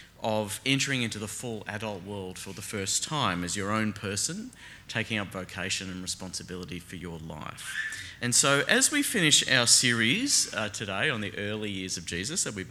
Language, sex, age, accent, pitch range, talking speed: English, male, 30-49, Australian, 95-120 Hz, 190 wpm